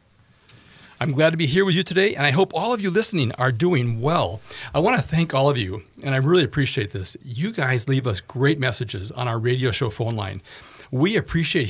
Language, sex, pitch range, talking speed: English, male, 115-150 Hz, 225 wpm